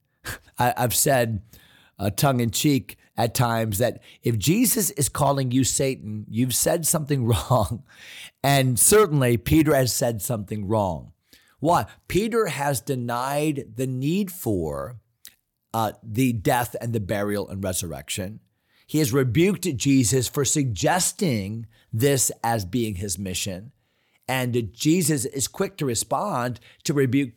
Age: 40-59